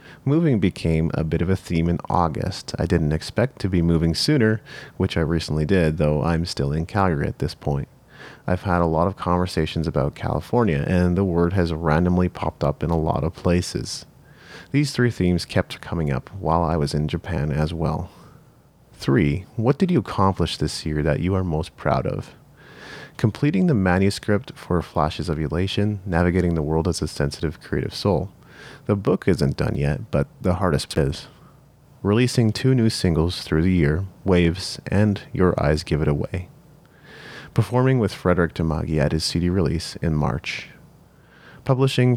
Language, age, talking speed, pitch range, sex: English, 30-49, 175 wpm, 80-100 Hz, male